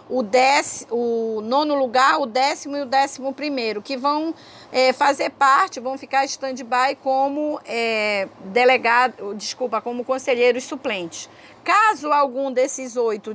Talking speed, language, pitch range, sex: 110 wpm, Portuguese, 235-280 Hz, female